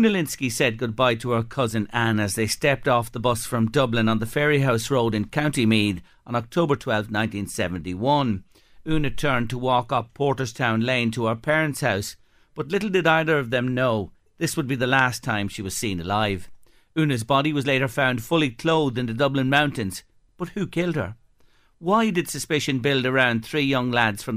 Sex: male